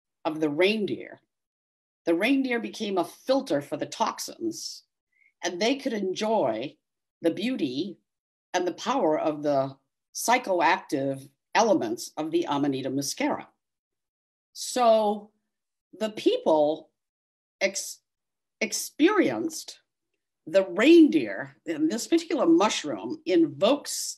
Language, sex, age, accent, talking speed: English, female, 50-69, American, 95 wpm